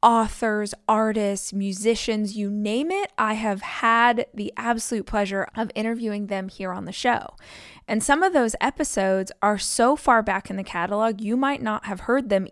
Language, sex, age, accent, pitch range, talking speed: English, female, 20-39, American, 190-225 Hz, 175 wpm